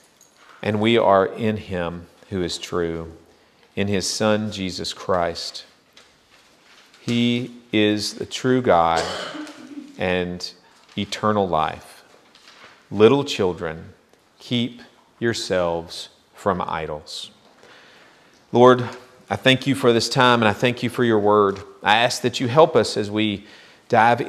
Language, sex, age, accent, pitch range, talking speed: English, male, 40-59, American, 95-120 Hz, 125 wpm